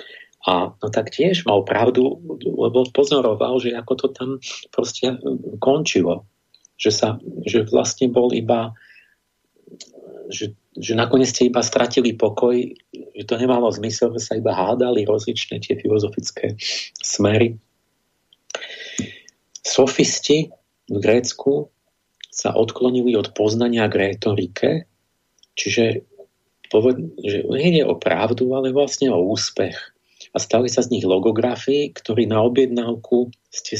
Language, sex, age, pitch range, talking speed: Slovak, male, 50-69, 115-135 Hz, 120 wpm